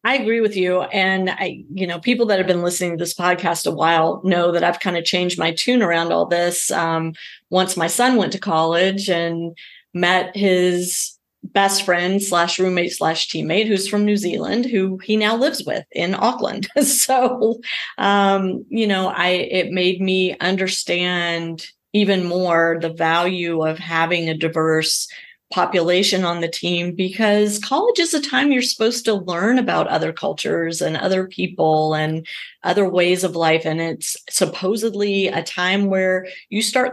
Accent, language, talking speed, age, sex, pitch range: American, English, 170 wpm, 30-49, female, 165-200 Hz